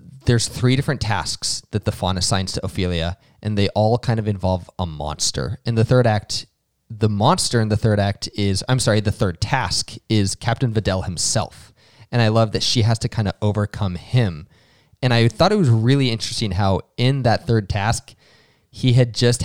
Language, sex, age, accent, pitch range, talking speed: English, male, 20-39, American, 100-125 Hz, 195 wpm